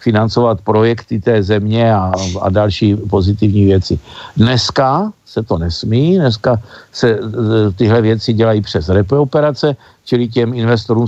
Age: 50-69